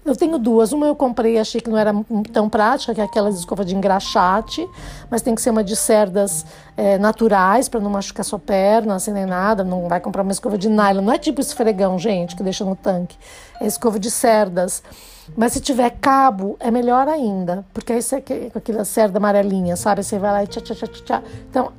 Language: Portuguese